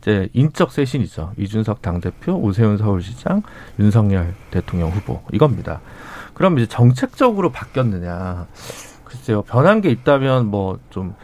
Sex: male